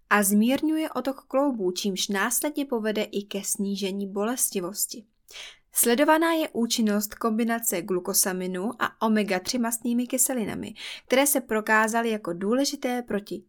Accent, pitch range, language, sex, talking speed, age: native, 195-240 Hz, Czech, female, 115 wpm, 20-39